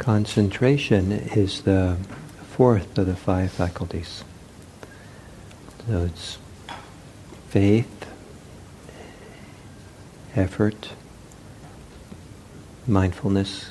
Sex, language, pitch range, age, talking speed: male, English, 95-110 Hz, 60-79, 55 wpm